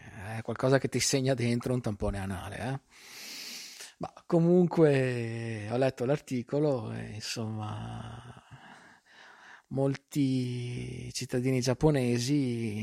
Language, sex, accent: Italian, male, native